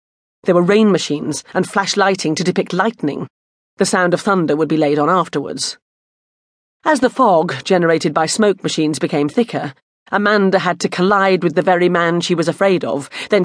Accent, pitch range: British, 160-195 Hz